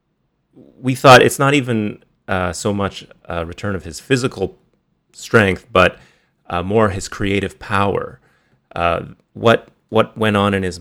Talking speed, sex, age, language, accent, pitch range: 150 wpm, male, 30-49, English, American, 90-110 Hz